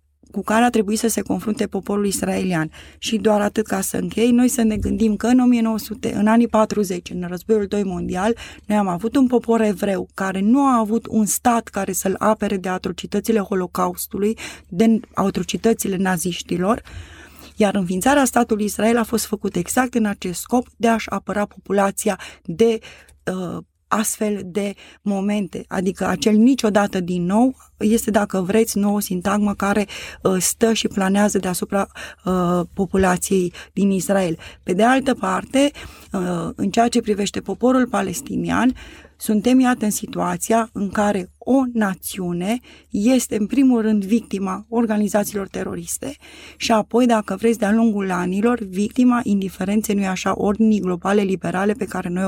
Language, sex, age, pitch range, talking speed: Romanian, female, 20-39, 190-225 Hz, 155 wpm